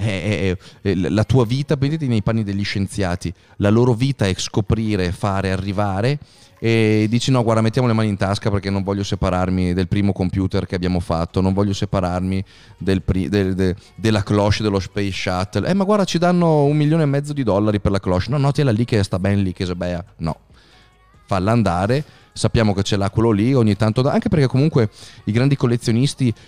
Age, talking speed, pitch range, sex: 30-49, 205 wpm, 95-115 Hz, male